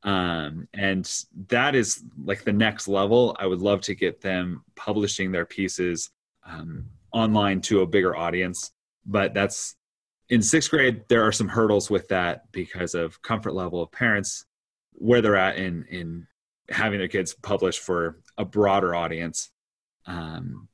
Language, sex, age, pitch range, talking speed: English, male, 30-49, 90-115 Hz, 155 wpm